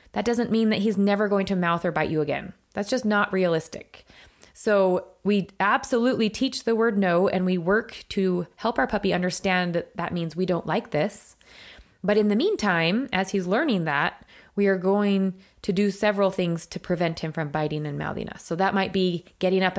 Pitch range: 175-225 Hz